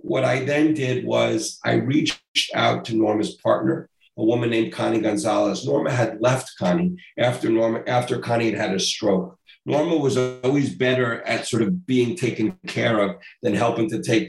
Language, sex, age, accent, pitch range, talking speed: English, male, 50-69, American, 105-150 Hz, 180 wpm